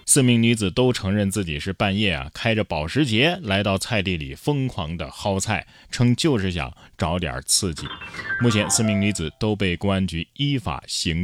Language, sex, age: Chinese, male, 20-39